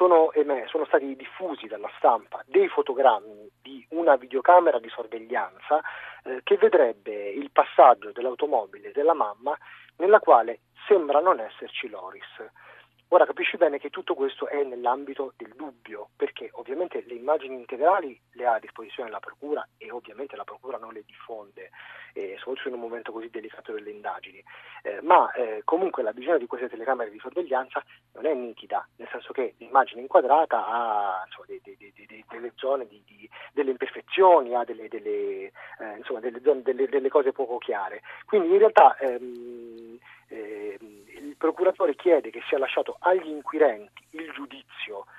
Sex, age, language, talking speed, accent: male, 30-49, Italian, 140 wpm, native